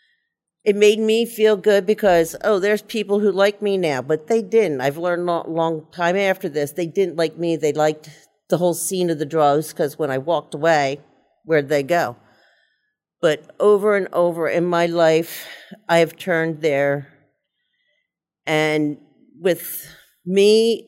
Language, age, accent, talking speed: English, 50-69, American, 165 wpm